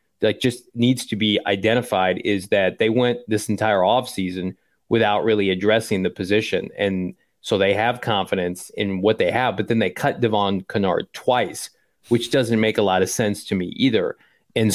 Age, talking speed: 30-49, 185 wpm